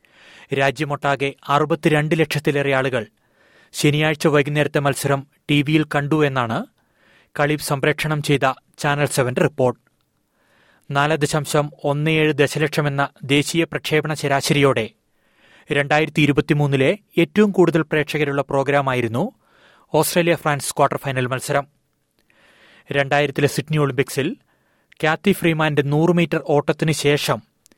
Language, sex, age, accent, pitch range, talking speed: Malayalam, male, 30-49, native, 140-155 Hz, 95 wpm